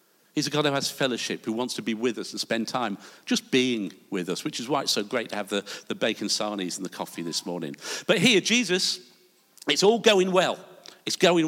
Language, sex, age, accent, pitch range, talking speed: English, male, 50-69, British, 125-185 Hz, 235 wpm